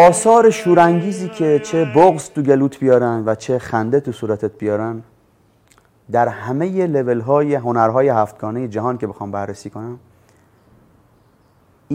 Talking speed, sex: 130 wpm, male